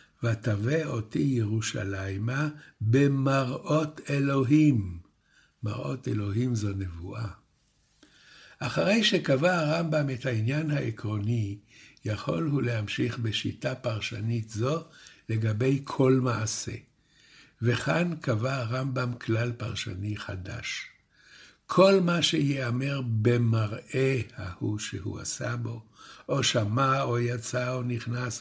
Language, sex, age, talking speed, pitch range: Hebrew, male, 60-79, 95 wpm, 110-140 Hz